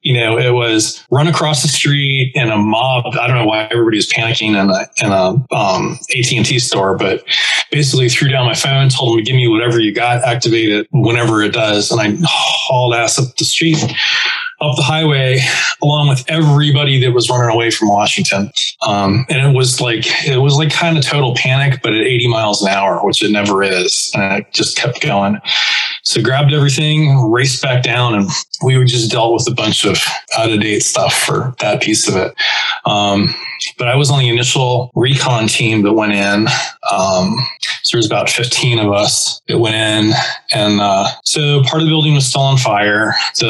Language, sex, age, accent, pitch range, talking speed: English, male, 20-39, American, 110-140 Hz, 200 wpm